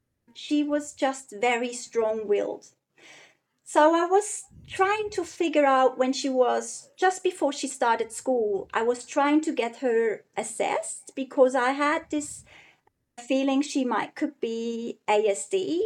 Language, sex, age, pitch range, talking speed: English, female, 40-59, 230-315 Hz, 135 wpm